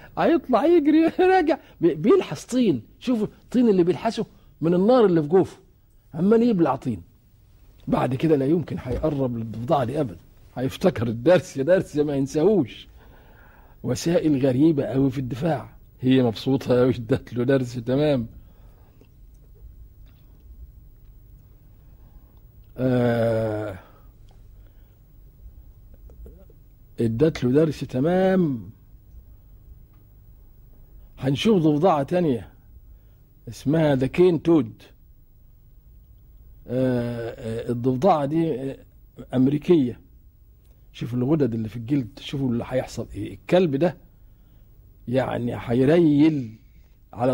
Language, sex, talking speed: Arabic, male, 90 wpm